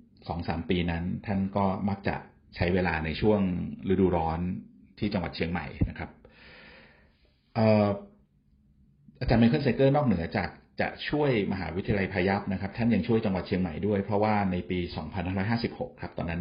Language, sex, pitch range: Thai, male, 85-100 Hz